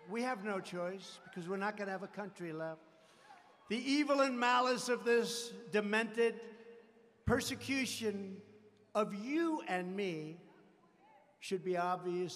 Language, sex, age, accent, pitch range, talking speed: English, male, 60-79, American, 195-255 Hz, 135 wpm